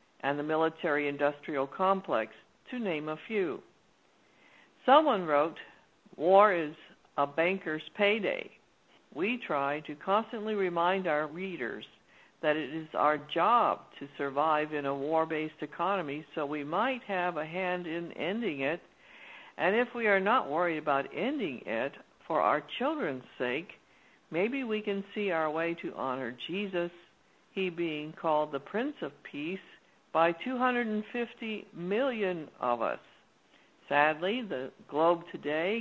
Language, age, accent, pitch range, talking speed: English, 60-79, American, 150-200 Hz, 135 wpm